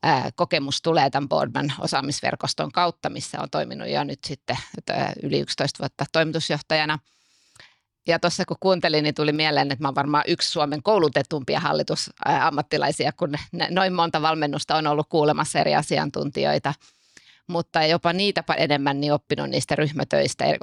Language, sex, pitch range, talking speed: Finnish, female, 140-165 Hz, 140 wpm